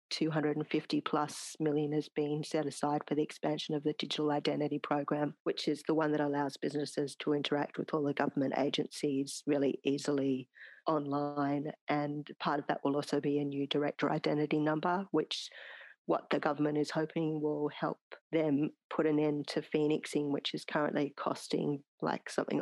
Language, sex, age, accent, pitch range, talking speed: English, female, 40-59, Australian, 140-155 Hz, 170 wpm